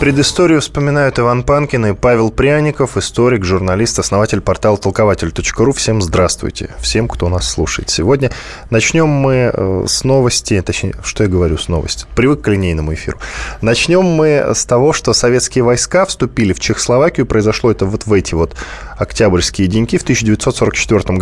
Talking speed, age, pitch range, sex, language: 150 wpm, 20-39, 100-135 Hz, male, Russian